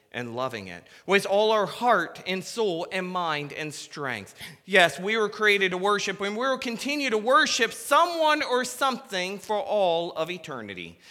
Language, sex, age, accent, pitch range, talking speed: English, male, 40-59, American, 170-230 Hz, 175 wpm